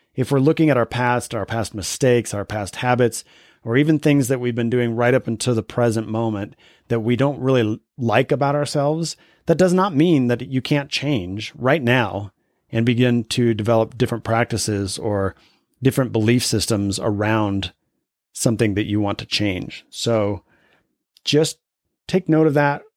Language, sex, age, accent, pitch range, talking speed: English, male, 30-49, American, 105-130 Hz, 170 wpm